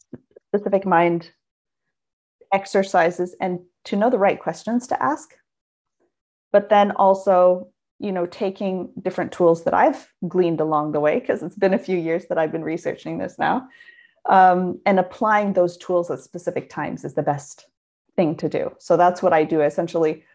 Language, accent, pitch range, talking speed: English, American, 170-200 Hz, 170 wpm